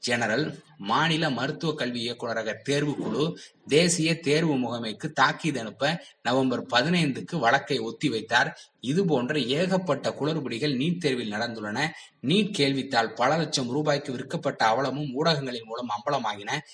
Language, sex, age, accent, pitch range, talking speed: Tamil, male, 20-39, native, 120-150 Hz, 115 wpm